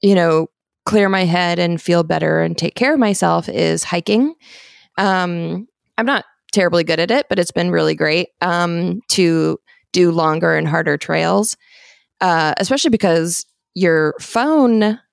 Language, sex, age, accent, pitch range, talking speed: English, female, 20-39, American, 170-215 Hz, 155 wpm